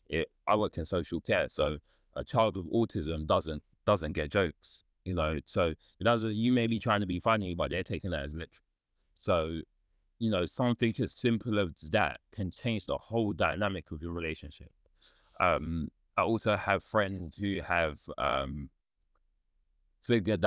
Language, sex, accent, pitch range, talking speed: English, male, British, 75-100 Hz, 160 wpm